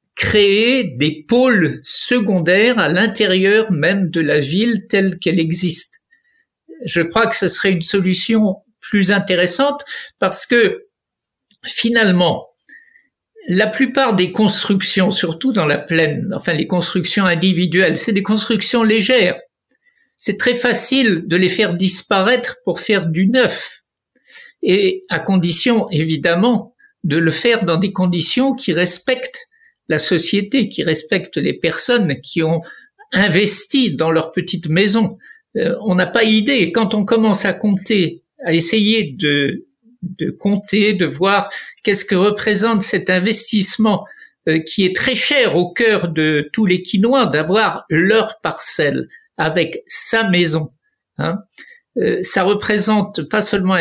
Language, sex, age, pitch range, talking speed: French, male, 60-79, 175-230 Hz, 135 wpm